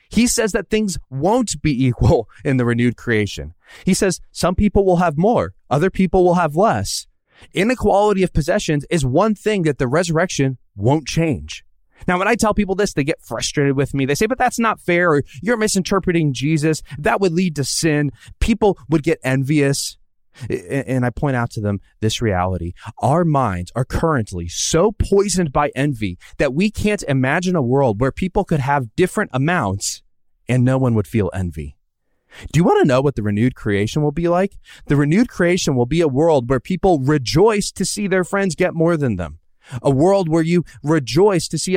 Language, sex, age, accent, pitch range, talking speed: English, male, 20-39, American, 125-180 Hz, 195 wpm